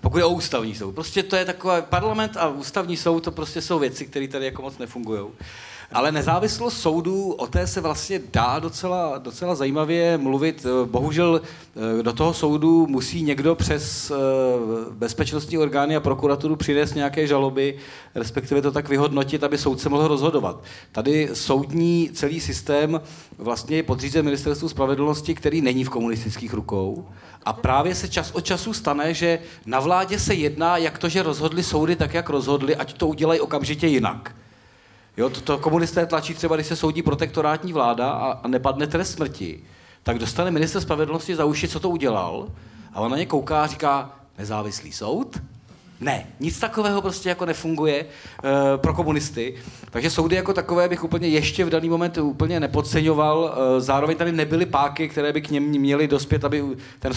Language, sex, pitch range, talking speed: Czech, male, 135-165 Hz, 170 wpm